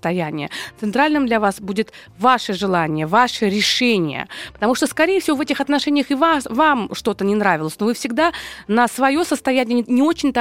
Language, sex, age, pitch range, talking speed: Russian, female, 20-39, 215-290 Hz, 175 wpm